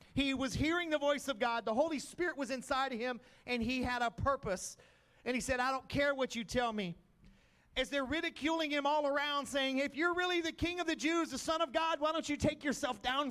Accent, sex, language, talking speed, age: American, male, English, 245 wpm, 40-59